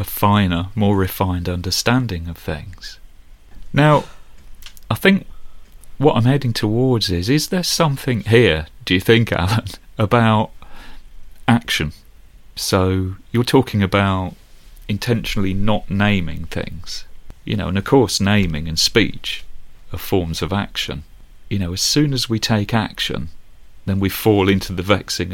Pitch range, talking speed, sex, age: 90-120 Hz, 140 wpm, male, 40-59